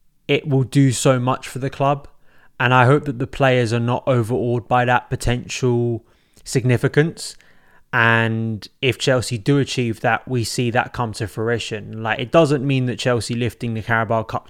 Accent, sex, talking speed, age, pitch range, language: British, male, 180 wpm, 20-39, 115-135 Hz, English